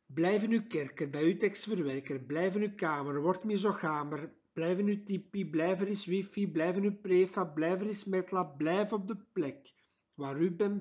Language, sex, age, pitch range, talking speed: Dutch, male, 60-79, 145-185 Hz, 210 wpm